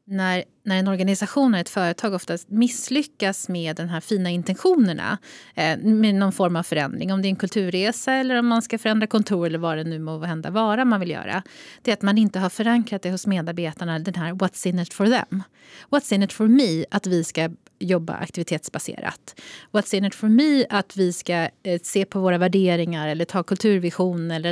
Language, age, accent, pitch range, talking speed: Swedish, 30-49, native, 180-230 Hz, 210 wpm